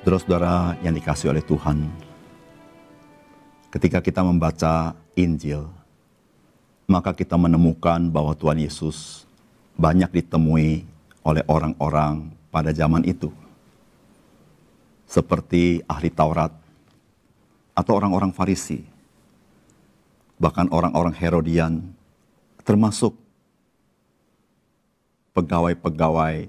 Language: Indonesian